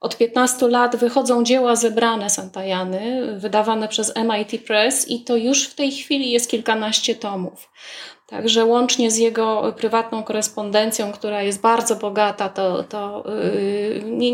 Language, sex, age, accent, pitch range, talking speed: Polish, female, 20-39, native, 215-245 Hz, 145 wpm